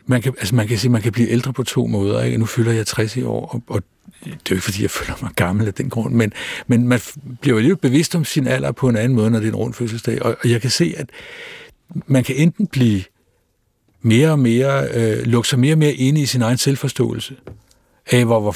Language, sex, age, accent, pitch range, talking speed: Danish, male, 60-79, native, 115-135 Hz, 260 wpm